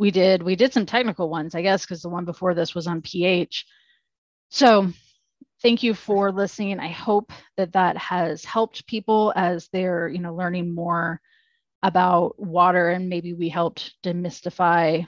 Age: 30-49